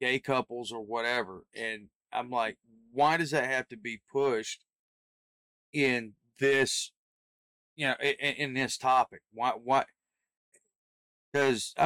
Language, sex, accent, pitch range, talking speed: English, male, American, 120-140 Hz, 125 wpm